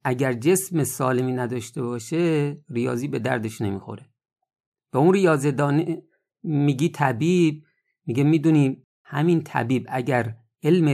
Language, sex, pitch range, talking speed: Persian, male, 120-160 Hz, 110 wpm